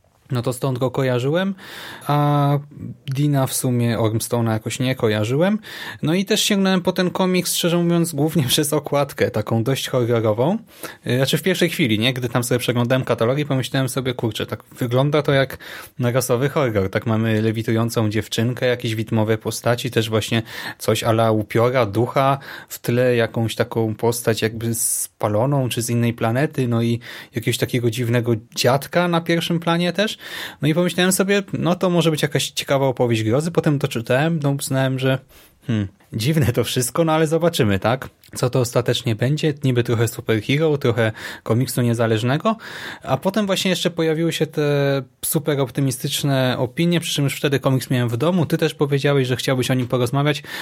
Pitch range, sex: 120-155 Hz, male